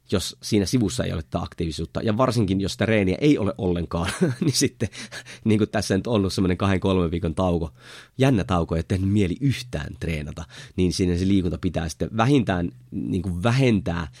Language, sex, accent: Finnish, male, native